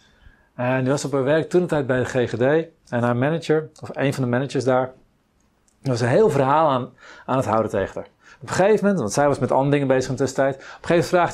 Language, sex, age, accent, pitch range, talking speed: Dutch, male, 40-59, Dutch, 130-190 Hz, 265 wpm